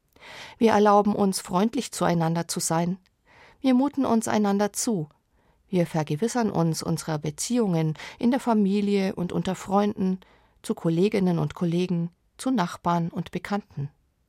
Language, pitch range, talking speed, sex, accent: German, 165-215 Hz, 130 wpm, female, German